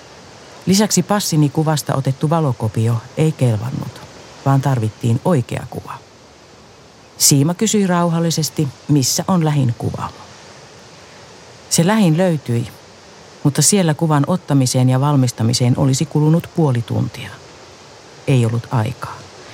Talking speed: 105 wpm